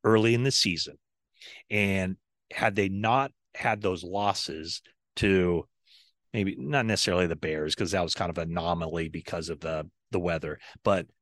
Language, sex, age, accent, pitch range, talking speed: English, male, 30-49, American, 90-110 Hz, 160 wpm